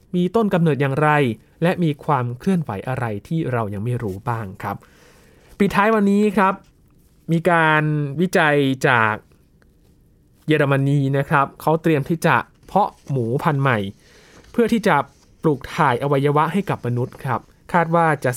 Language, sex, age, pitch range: Thai, male, 20-39, 125-160 Hz